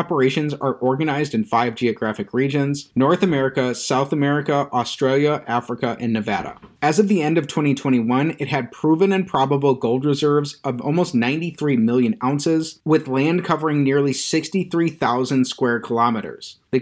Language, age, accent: English, 30-49, American